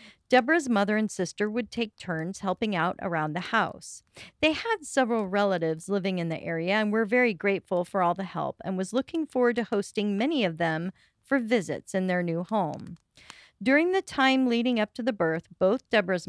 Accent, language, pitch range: American, English, 180-245 Hz